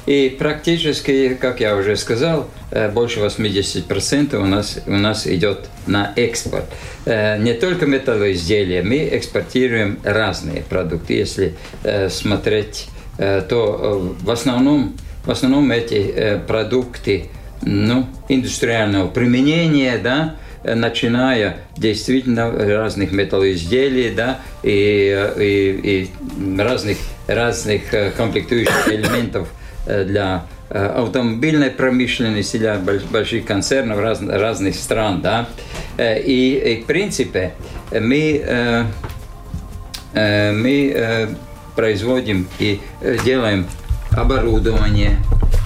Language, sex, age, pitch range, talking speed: Russian, male, 50-69, 100-125 Hz, 80 wpm